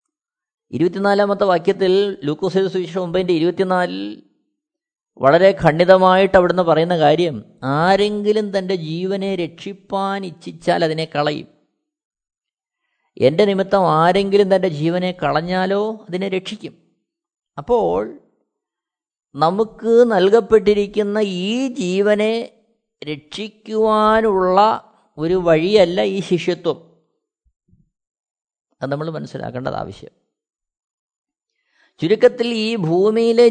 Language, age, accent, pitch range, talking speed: Malayalam, 20-39, native, 180-225 Hz, 75 wpm